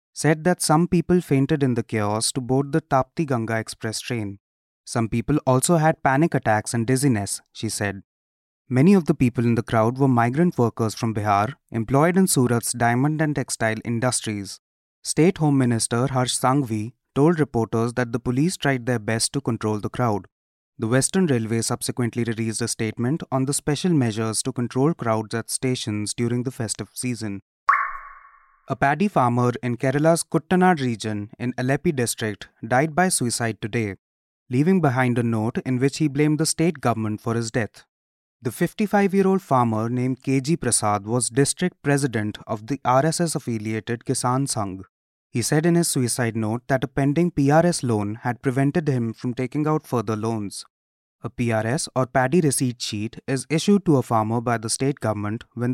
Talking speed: 170 wpm